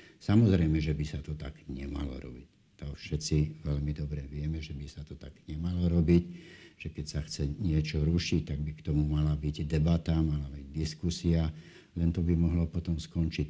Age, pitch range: 60-79, 75-85 Hz